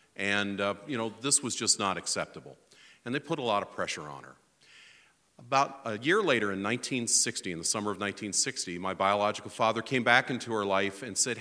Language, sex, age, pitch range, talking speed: English, male, 50-69, 95-125 Hz, 205 wpm